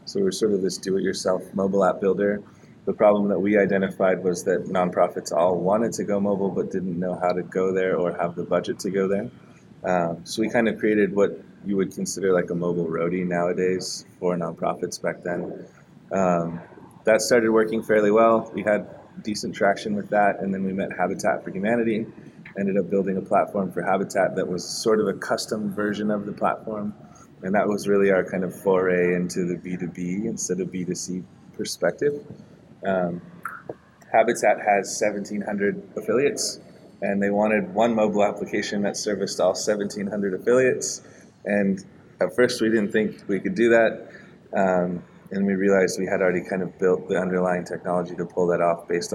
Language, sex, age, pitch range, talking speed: English, male, 20-39, 90-105 Hz, 185 wpm